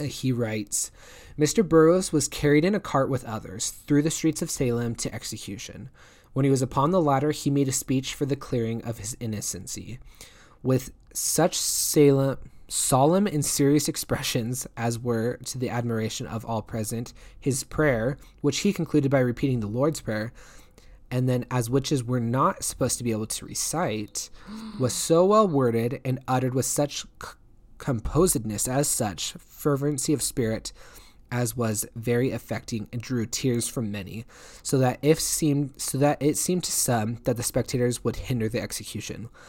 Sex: male